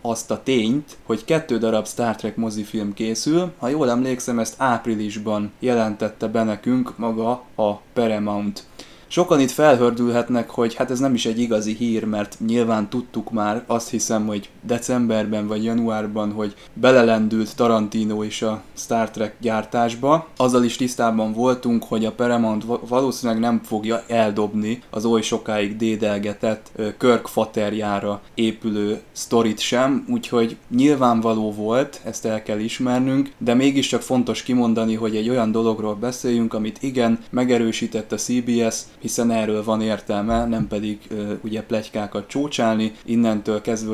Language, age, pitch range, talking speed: Hungarian, 20-39, 110-120 Hz, 140 wpm